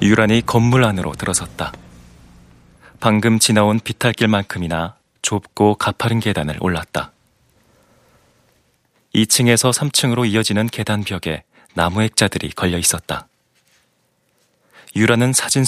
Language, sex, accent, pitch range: Korean, male, native, 85-115 Hz